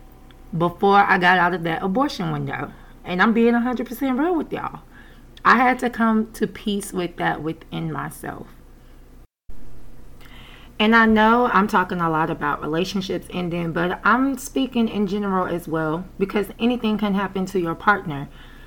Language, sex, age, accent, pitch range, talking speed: English, female, 20-39, American, 165-210 Hz, 160 wpm